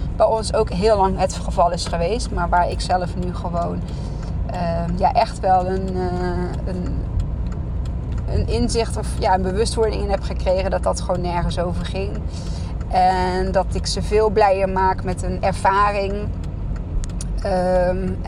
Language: Dutch